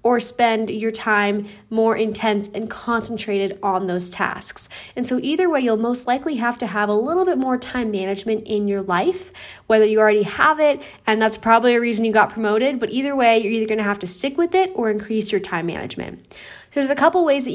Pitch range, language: 200-245 Hz, English